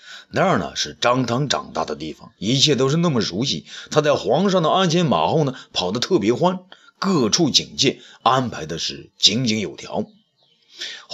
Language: Chinese